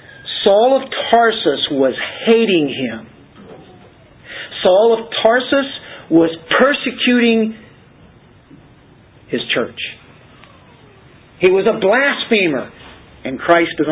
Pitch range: 135-190 Hz